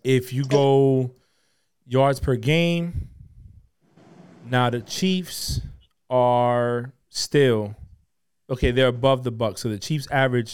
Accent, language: American, English